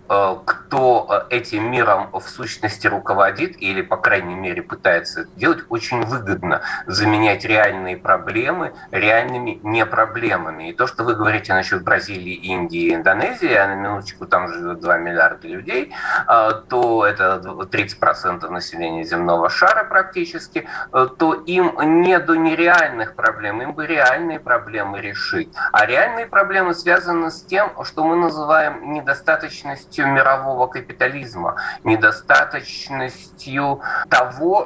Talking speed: 120 wpm